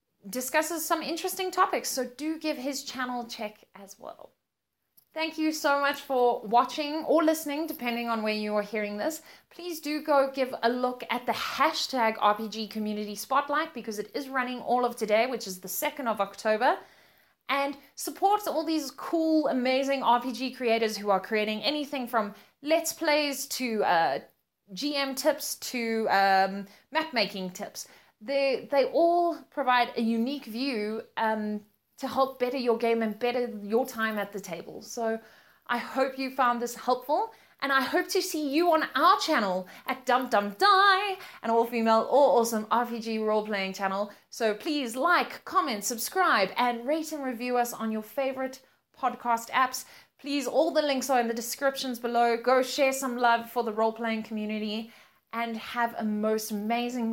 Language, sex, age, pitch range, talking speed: English, female, 20-39, 220-285 Hz, 165 wpm